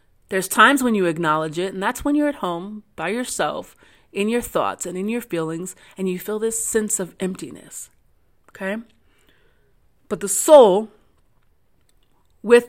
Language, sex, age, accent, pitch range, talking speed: English, female, 30-49, American, 185-240 Hz, 155 wpm